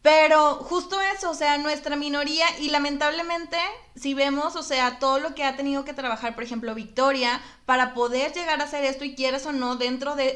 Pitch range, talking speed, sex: 230-280 Hz, 205 wpm, female